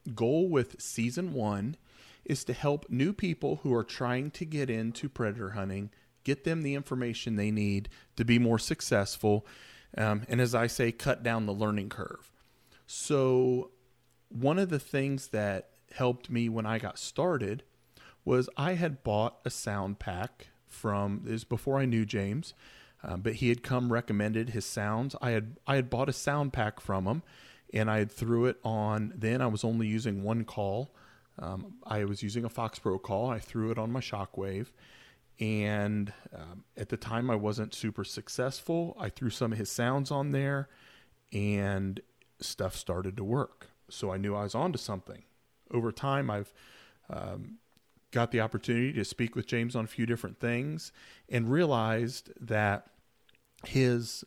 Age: 30-49